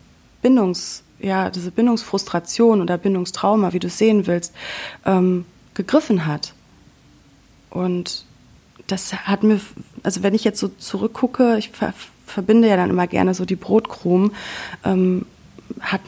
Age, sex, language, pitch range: 30-49, female, German, 170-205 Hz